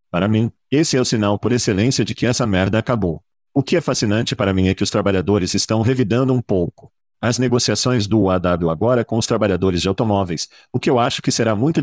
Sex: male